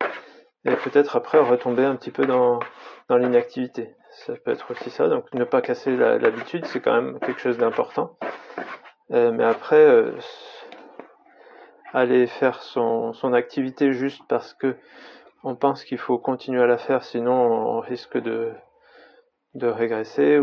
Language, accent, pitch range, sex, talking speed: French, French, 115-145 Hz, male, 155 wpm